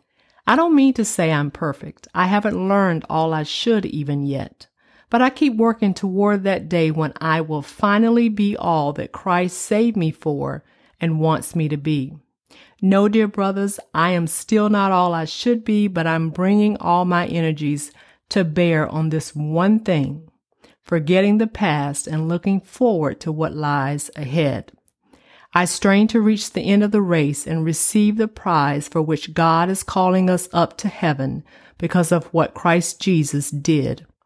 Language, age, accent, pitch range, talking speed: English, 40-59, American, 160-205 Hz, 175 wpm